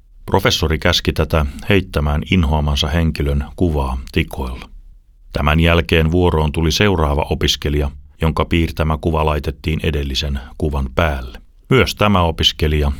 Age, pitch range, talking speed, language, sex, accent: 30-49, 70-85 Hz, 110 wpm, Finnish, male, native